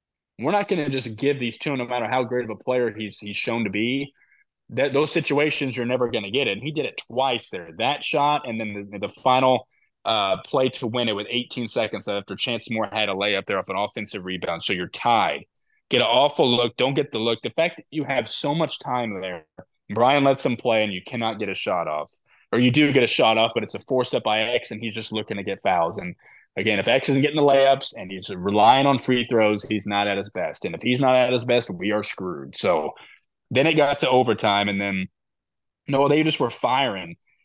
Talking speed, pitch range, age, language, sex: 245 wpm, 110-135 Hz, 20-39, English, male